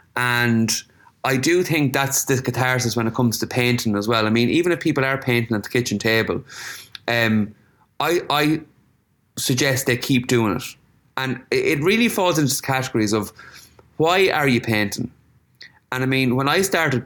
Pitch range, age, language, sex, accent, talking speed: 110-135 Hz, 20-39, English, male, Irish, 175 wpm